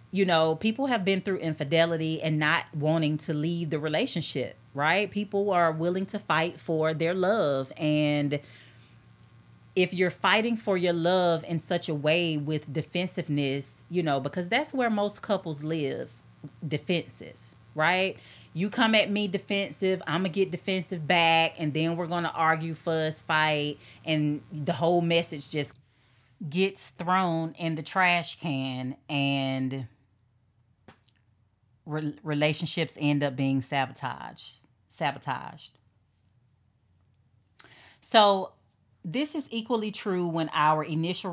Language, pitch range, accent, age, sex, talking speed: English, 135-175 Hz, American, 30-49, female, 130 wpm